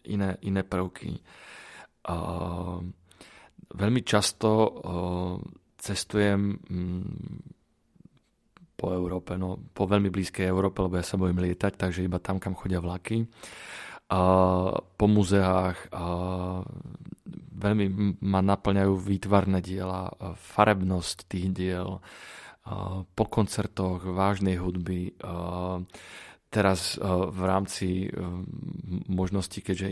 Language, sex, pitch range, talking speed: Slovak, male, 90-105 Hz, 100 wpm